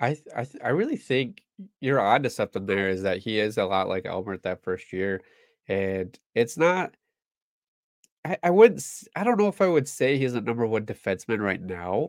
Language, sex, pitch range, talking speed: English, male, 100-150 Hz, 200 wpm